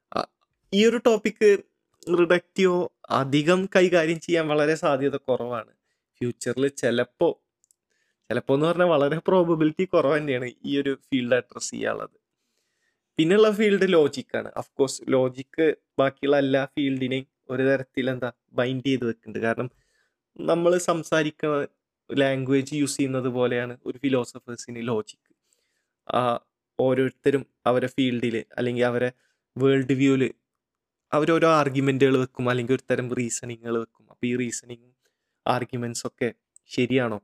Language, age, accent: Malayalam, 20-39, native